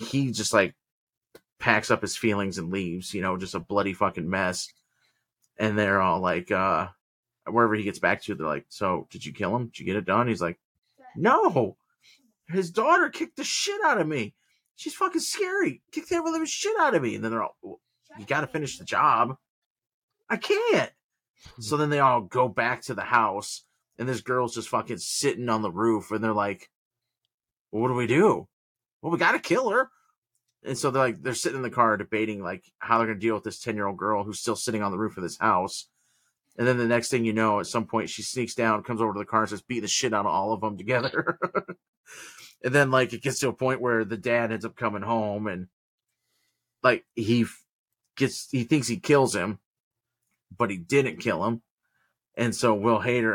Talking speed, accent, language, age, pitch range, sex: 215 wpm, American, English, 30-49, 110-140 Hz, male